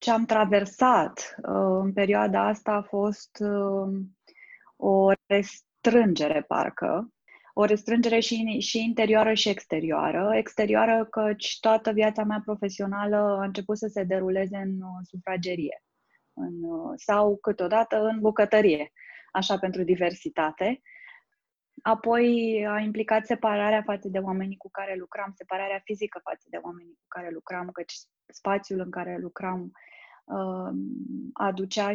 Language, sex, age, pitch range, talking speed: Romanian, female, 20-39, 185-220 Hz, 120 wpm